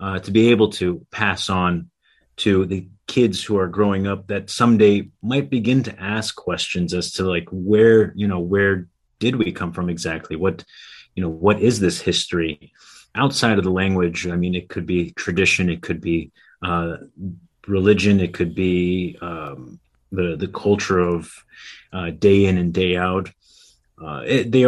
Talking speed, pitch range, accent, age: 175 wpm, 90-110 Hz, American, 30-49